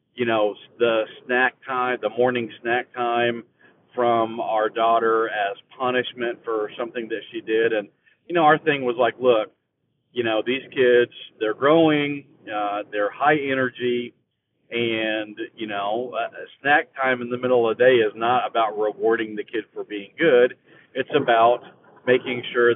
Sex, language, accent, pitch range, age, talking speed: male, English, American, 110-160 Hz, 40-59, 165 wpm